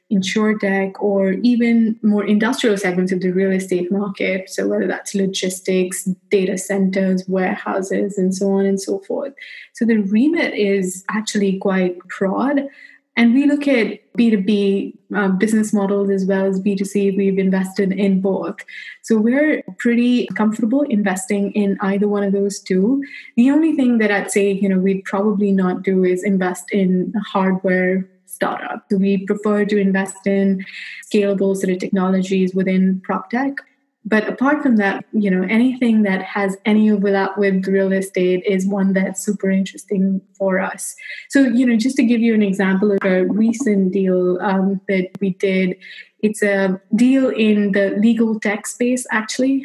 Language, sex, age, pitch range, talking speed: English, female, 20-39, 190-220 Hz, 160 wpm